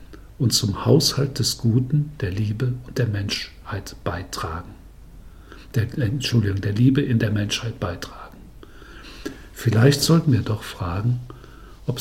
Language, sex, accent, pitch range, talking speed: German, male, German, 95-125 Hz, 120 wpm